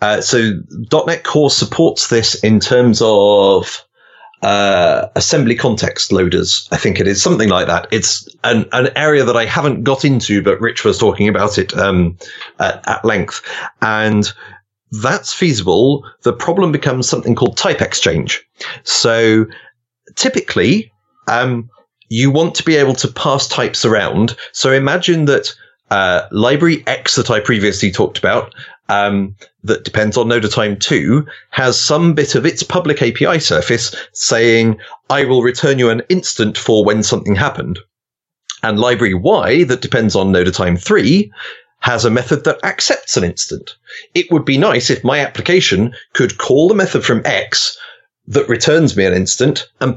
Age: 30-49